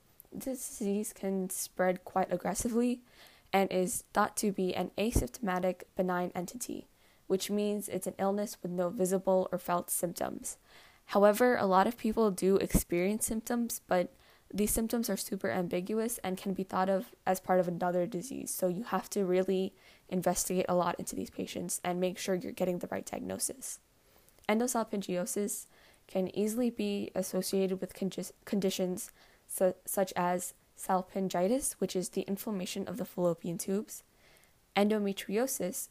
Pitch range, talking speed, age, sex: 185-205 Hz, 145 wpm, 10-29, female